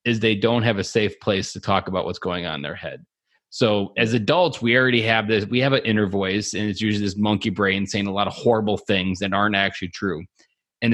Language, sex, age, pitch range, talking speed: English, male, 30-49, 95-115 Hz, 245 wpm